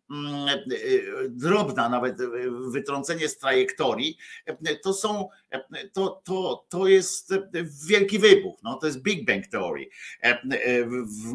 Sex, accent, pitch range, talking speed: male, native, 130-195 Hz, 105 wpm